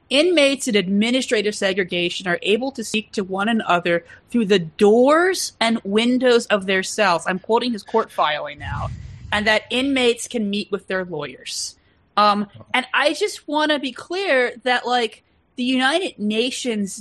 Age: 30-49